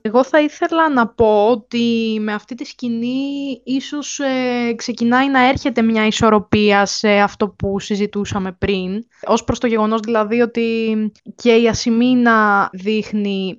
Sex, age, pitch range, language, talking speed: female, 20-39, 200-250 Hz, Greek, 140 wpm